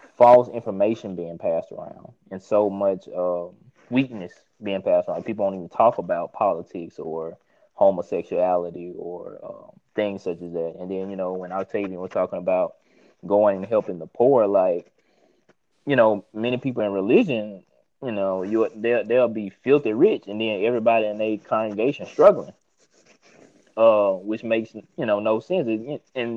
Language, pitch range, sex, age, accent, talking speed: English, 105-165 Hz, male, 20-39, American, 165 wpm